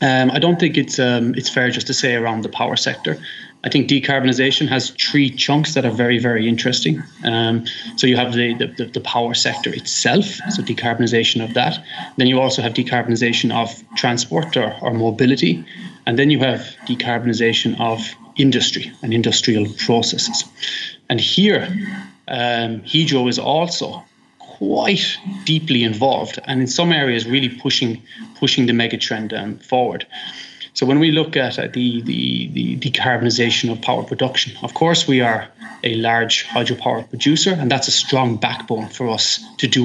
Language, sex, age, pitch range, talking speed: English, male, 20-39, 115-135 Hz, 170 wpm